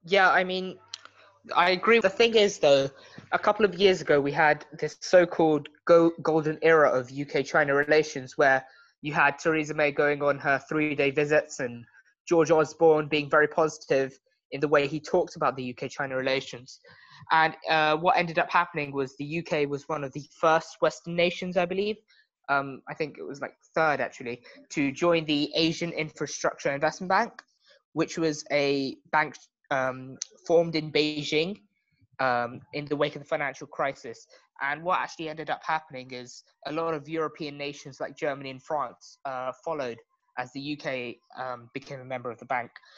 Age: 20-39